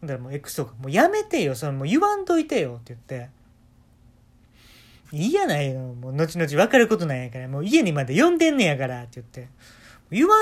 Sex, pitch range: male, 120-170 Hz